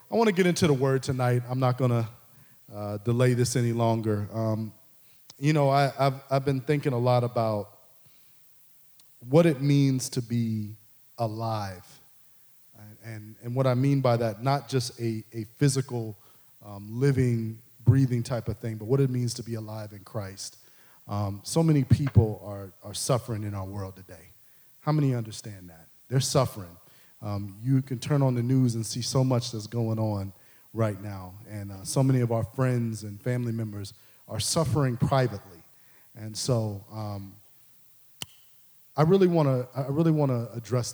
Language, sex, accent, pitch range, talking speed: English, male, American, 110-130 Hz, 170 wpm